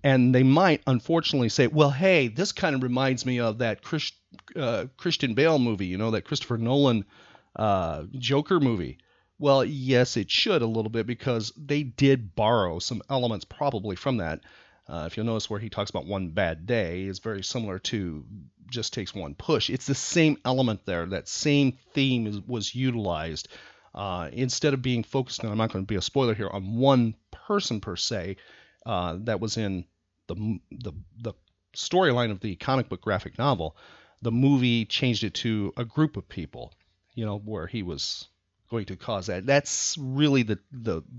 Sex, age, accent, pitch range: male, 40-59, American, 100-140 Hz